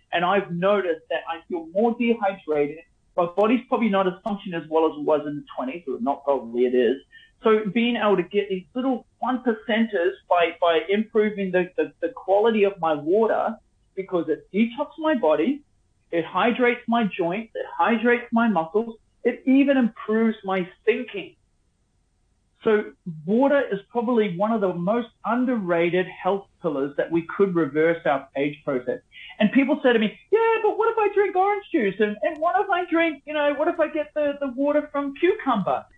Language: English